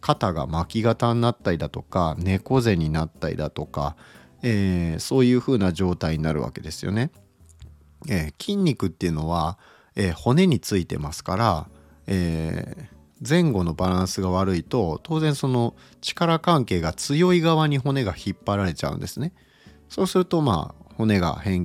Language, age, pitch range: Japanese, 40-59, 85-125 Hz